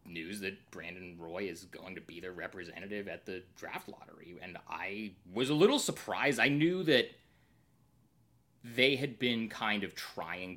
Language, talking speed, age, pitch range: English, 165 wpm, 30-49, 85-110 Hz